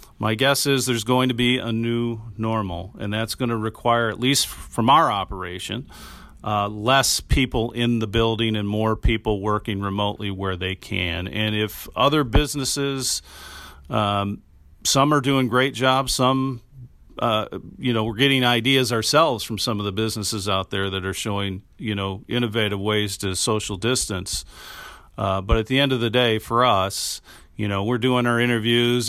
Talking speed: 175 wpm